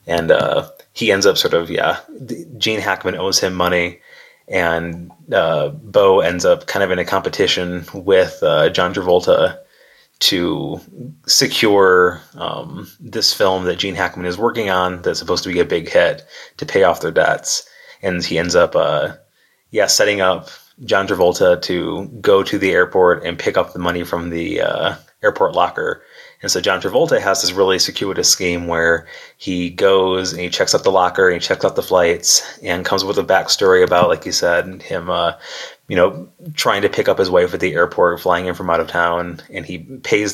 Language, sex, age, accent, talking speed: English, male, 20-39, American, 195 wpm